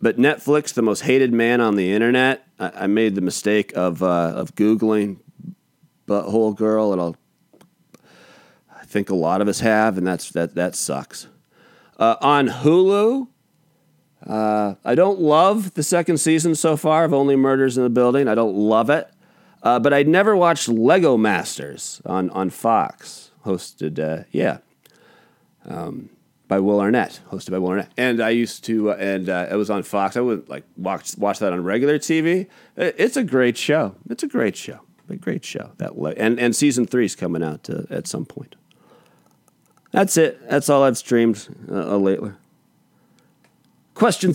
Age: 30-49